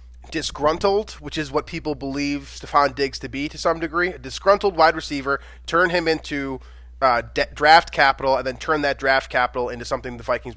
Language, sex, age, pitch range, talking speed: English, male, 20-39, 120-155 Hz, 195 wpm